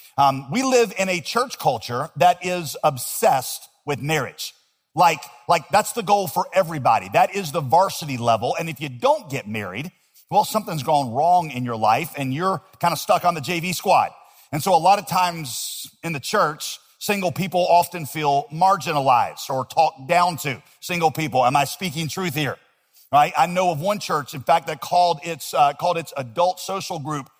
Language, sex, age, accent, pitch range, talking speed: English, male, 50-69, American, 140-185 Hz, 195 wpm